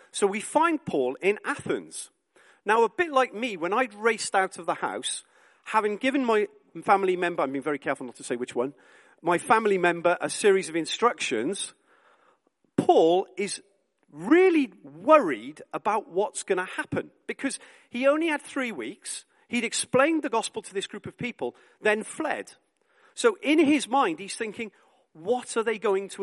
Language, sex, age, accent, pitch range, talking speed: English, male, 40-59, British, 195-310 Hz, 175 wpm